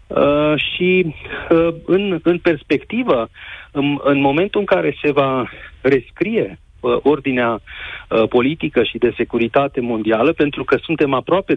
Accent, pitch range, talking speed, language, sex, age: native, 120-155 Hz, 115 wpm, Romanian, male, 40-59